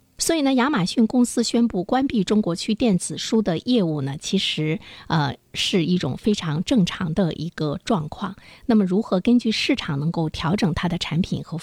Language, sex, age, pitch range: Chinese, female, 50-69, 155-215 Hz